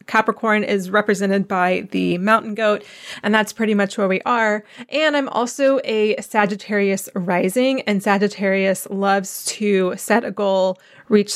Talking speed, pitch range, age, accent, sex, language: 150 wpm, 190-215 Hz, 20-39, American, female, English